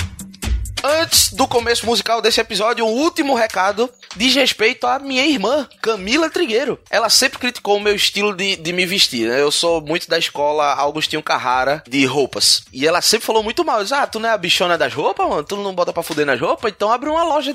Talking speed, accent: 210 wpm, Brazilian